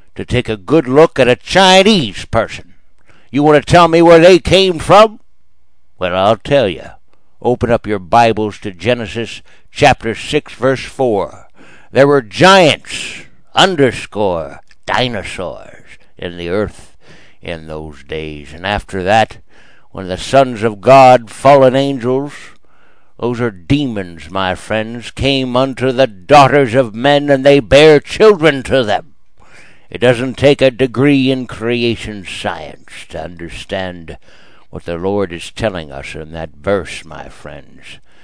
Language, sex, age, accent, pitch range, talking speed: English, male, 60-79, American, 95-135 Hz, 145 wpm